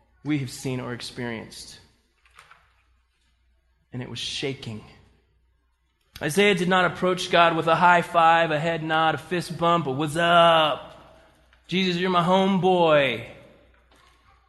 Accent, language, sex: American, English, male